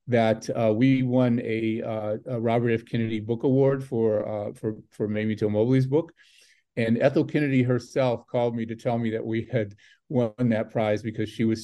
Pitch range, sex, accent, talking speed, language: 110-125 Hz, male, American, 195 wpm, English